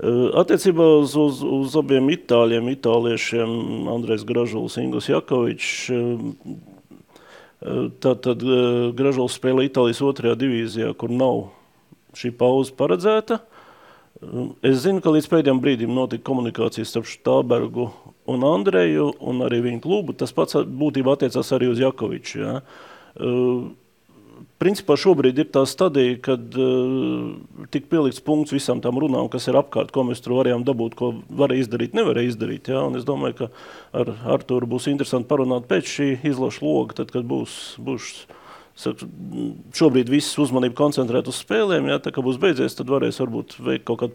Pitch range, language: 115-140 Hz, English